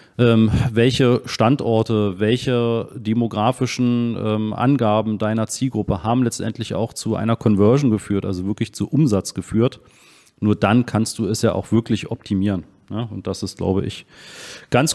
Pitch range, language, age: 105-125 Hz, German, 40-59